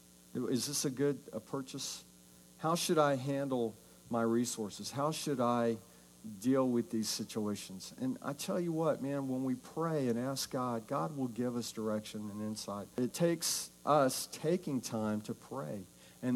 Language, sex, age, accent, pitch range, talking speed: English, male, 60-79, American, 105-130 Hz, 170 wpm